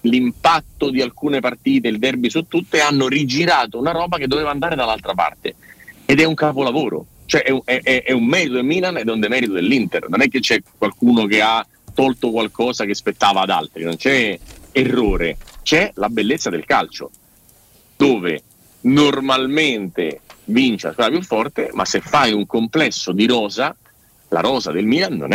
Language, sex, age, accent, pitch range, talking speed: Italian, male, 40-59, native, 110-145 Hz, 175 wpm